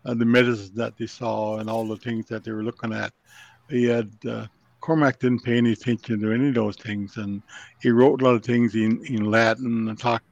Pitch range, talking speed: 110-130 Hz, 235 wpm